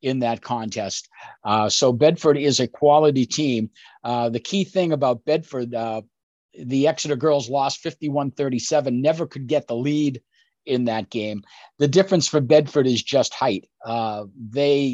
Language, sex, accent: English, male, American